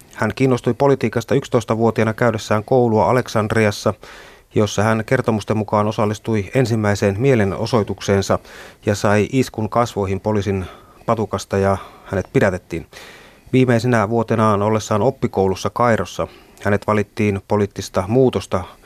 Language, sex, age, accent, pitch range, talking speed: Finnish, male, 30-49, native, 100-120 Hz, 100 wpm